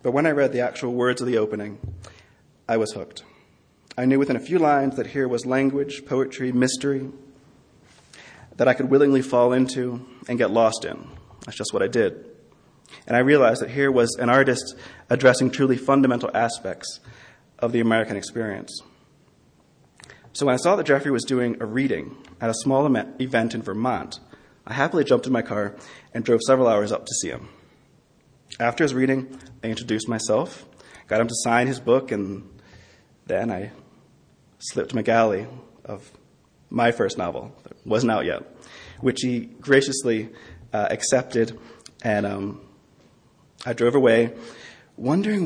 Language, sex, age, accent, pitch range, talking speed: English, male, 30-49, American, 115-135 Hz, 160 wpm